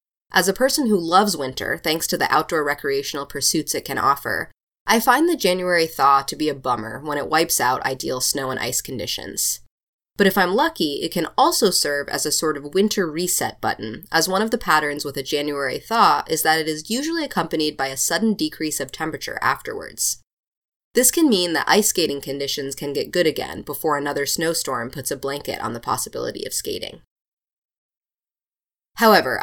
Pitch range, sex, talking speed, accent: 145-190 Hz, female, 190 wpm, American